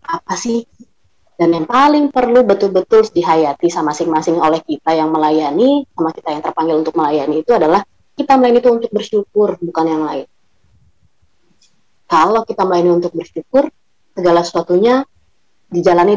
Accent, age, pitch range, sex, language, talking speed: native, 20-39, 165-235 Hz, female, Indonesian, 140 wpm